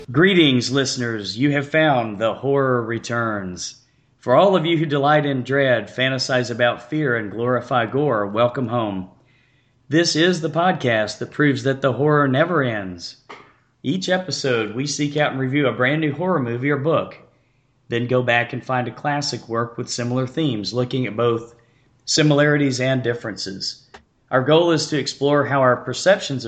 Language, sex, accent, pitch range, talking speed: English, male, American, 120-145 Hz, 170 wpm